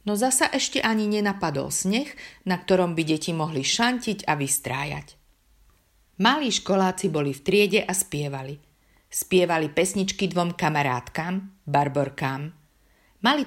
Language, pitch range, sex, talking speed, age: Slovak, 145-190 Hz, female, 120 wpm, 50-69